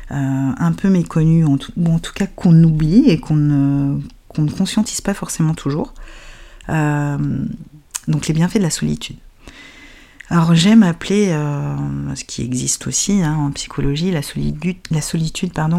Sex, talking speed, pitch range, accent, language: female, 150 wpm, 140-165 Hz, French, French